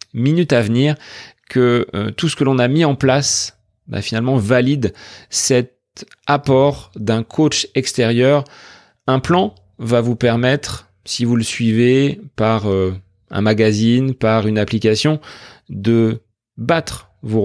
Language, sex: French, male